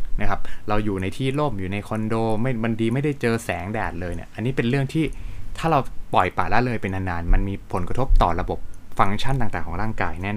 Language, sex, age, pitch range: Thai, male, 20-39, 95-125 Hz